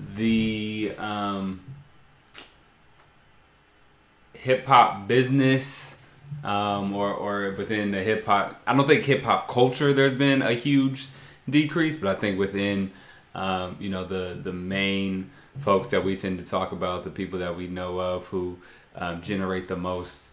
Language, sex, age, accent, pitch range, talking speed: English, male, 20-39, American, 95-115 Hz, 150 wpm